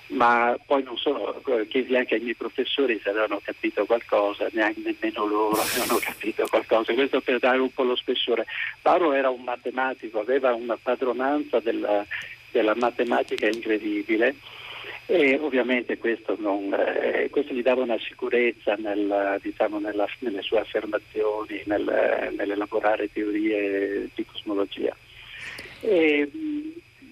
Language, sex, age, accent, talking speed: Italian, male, 50-69, native, 130 wpm